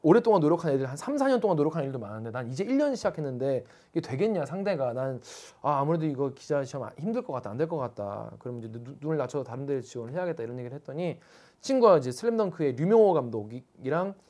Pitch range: 135-200 Hz